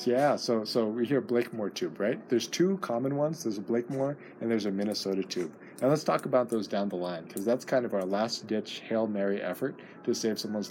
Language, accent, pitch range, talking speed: English, American, 100-125 Hz, 225 wpm